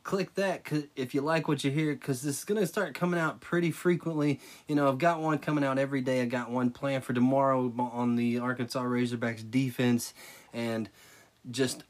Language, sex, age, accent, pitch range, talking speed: English, male, 20-39, American, 115-145 Hz, 200 wpm